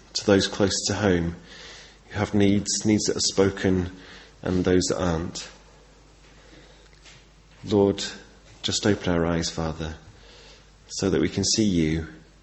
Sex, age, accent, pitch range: male, 30-49, British, 85-100 Hz